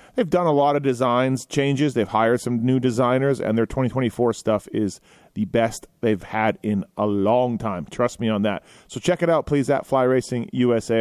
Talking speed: 205 wpm